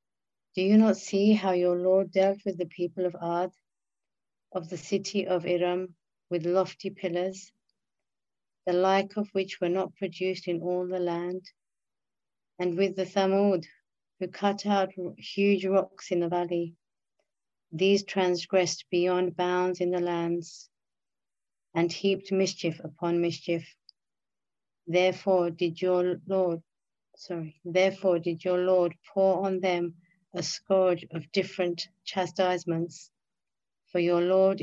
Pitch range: 170-195 Hz